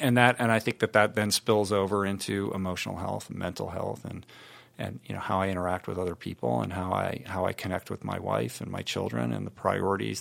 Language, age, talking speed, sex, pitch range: English, 40-59, 240 wpm, male, 95-110 Hz